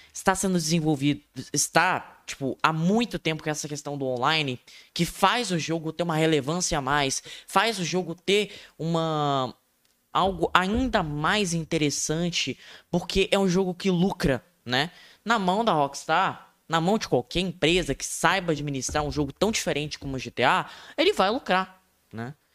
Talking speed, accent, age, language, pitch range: 160 wpm, Brazilian, 10-29, Portuguese, 150-190 Hz